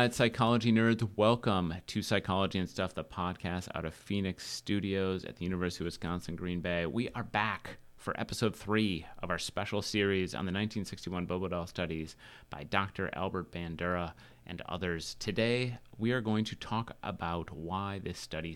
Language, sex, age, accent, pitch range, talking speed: English, male, 30-49, American, 90-115 Hz, 170 wpm